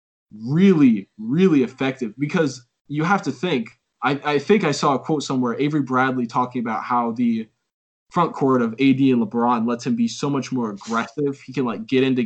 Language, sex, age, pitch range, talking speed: English, male, 20-39, 120-150 Hz, 195 wpm